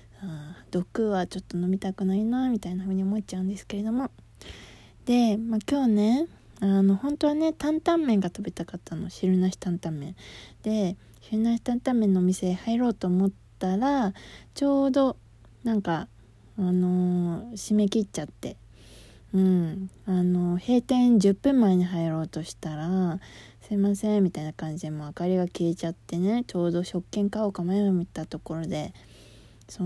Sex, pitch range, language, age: female, 170-225 Hz, Japanese, 20-39